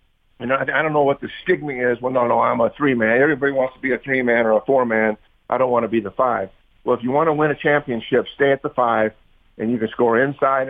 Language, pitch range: English, 115-135 Hz